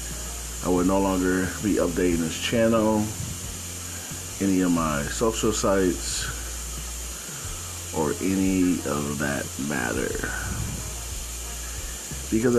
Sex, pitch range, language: male, 80-95 Hz, English